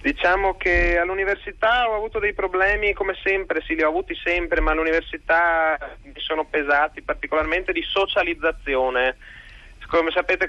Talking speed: 135 wpm